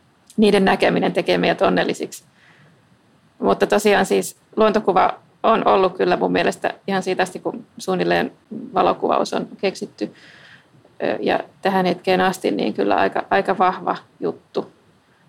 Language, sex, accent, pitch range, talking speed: Finnish, female, native, 175-195 Hz, 125 wpm